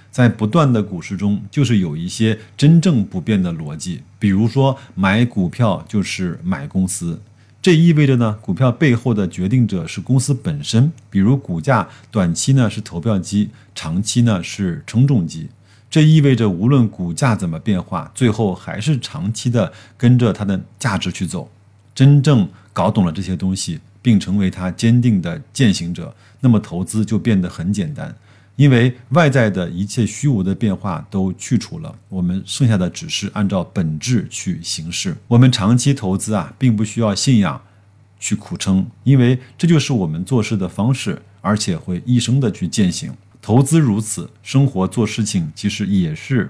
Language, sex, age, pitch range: Chinese, male, 50-69, 100-130 Hz